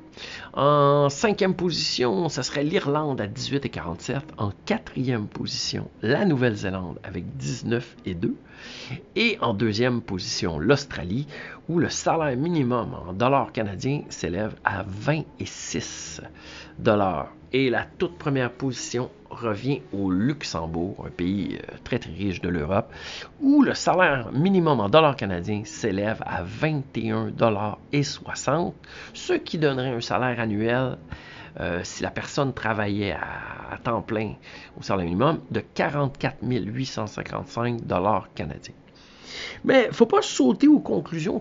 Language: French